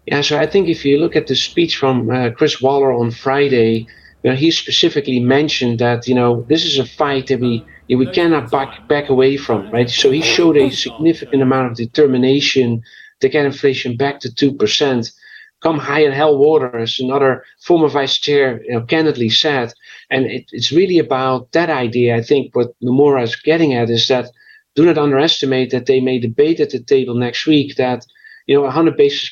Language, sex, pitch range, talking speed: English, male, 125-155 Hz, 200 wpm